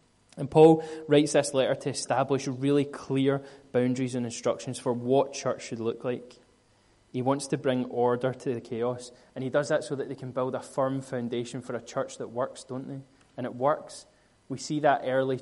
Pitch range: 125-145 Hz